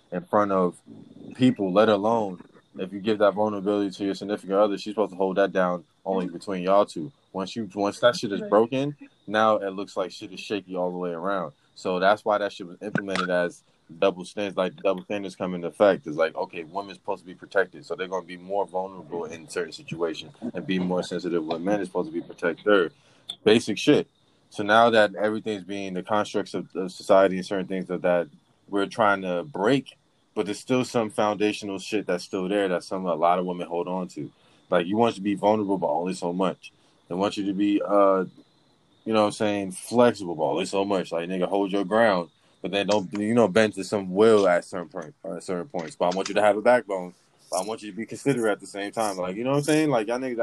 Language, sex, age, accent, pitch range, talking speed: English, male, 20-39, American, 95-105 Hz, 240 wpm